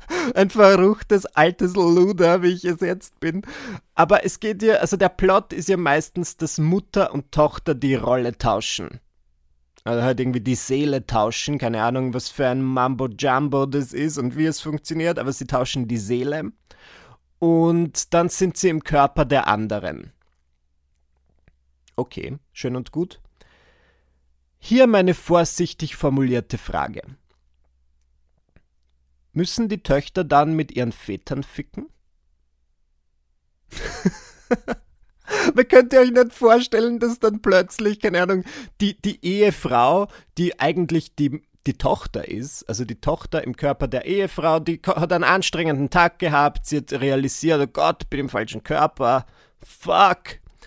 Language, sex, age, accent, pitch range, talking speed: German, male, 30-49, German, 120-180 Hz, 140 wpm